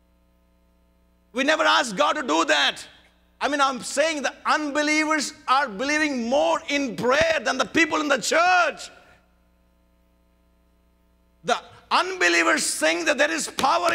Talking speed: 135 wpm